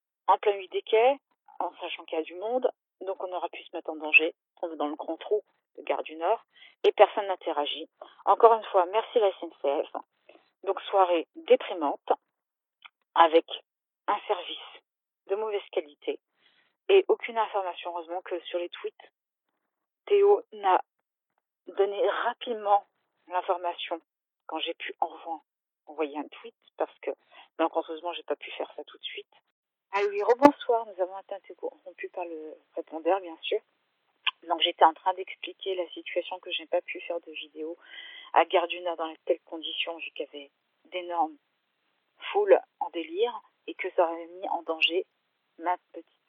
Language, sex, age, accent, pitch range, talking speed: French, female, 40-59, French, 170-275 Hz, 165 wpm